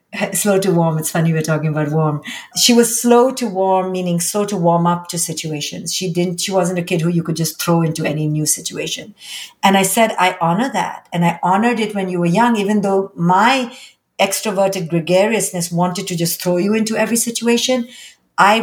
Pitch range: 175-220 Hz